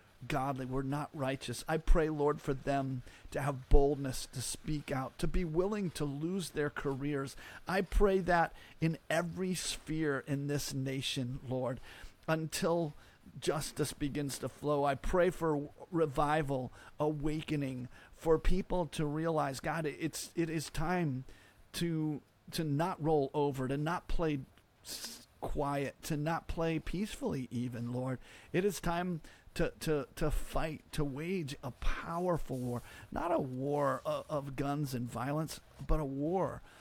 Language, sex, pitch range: English, male, 130-160 Hz